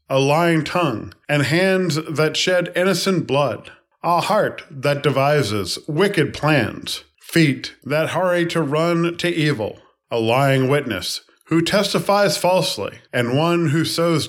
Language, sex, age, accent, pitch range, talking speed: English, male, 40-59, American, 115-155 Hz, 135 wpm